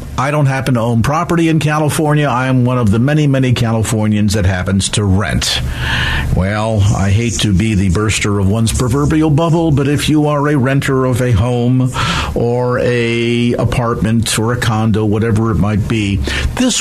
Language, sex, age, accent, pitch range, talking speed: English, male, 50-69, American, 105-145 Hz, 180 wpm